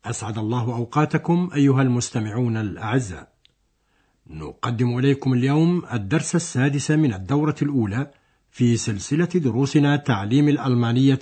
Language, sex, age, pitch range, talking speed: Arabic, male, 60-79, 115-145 Hz, 100 wpm